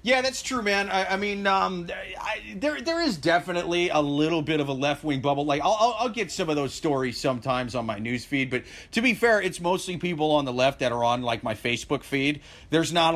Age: 40-59